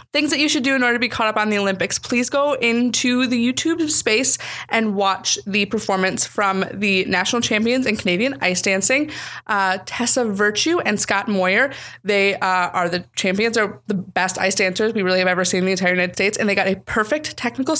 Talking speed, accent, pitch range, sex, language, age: 215 wpm, American, 205-275 Hz, female, English, 20-39